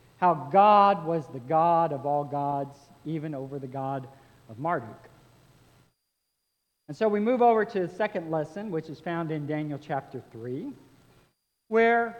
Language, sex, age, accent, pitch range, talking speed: English, male, 50-69, American, 160-225 Hz, 150 wpm